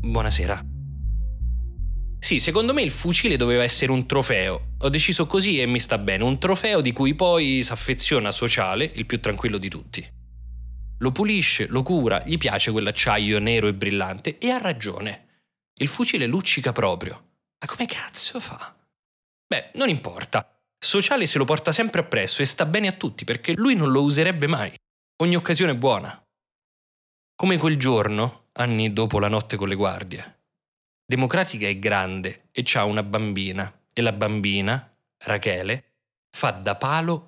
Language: Italian